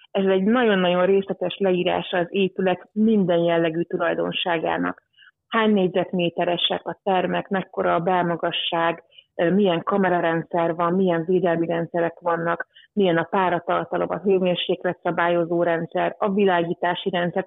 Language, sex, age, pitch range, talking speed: Hungarian, female, 30-49, 175-200 Hz, 115 wpm